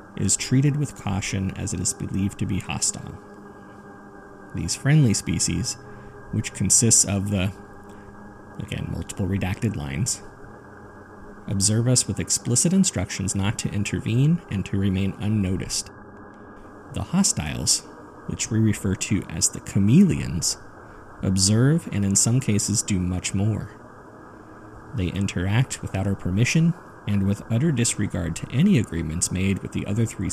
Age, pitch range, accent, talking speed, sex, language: 30-49, 100-115 Hz, American, 135 wpm, male, English